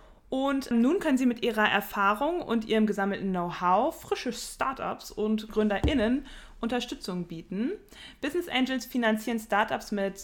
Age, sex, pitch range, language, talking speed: 20-39, female, 195-235 Hz, German, 130 wpm